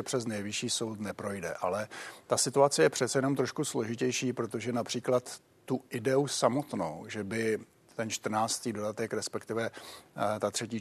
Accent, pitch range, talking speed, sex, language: native, 110-130 Hz, 145 wpm, male, Czech